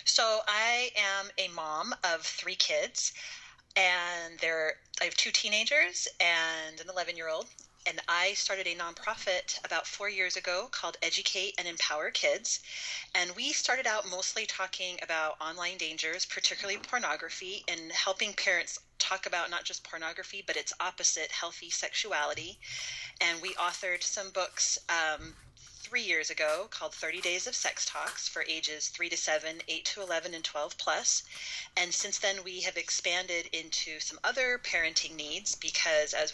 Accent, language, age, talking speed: American, English, 30-49, 155 wpm